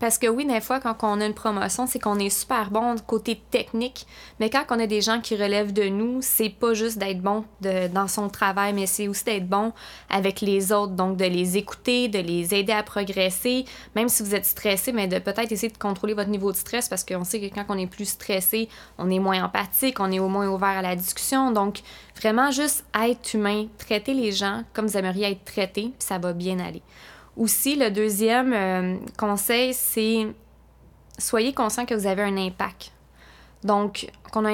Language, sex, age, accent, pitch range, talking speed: French, female, 20-39, Canadian, 195-225 Hz, 210 wpm